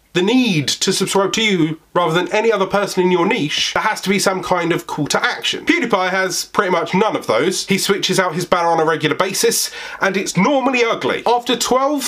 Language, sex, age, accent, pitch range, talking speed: English, male, 30-49, British, 180-270 Hz, 230 wpm